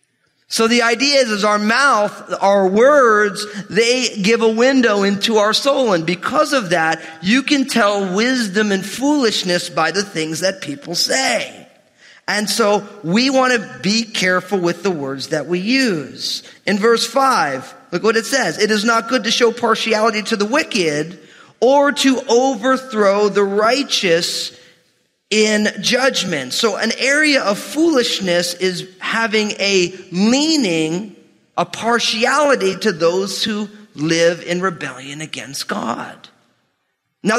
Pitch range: 175-240 Hz